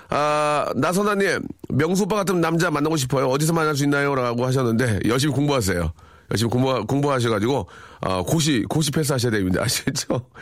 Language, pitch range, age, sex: Korean, 115-165 Hz, 40-59, male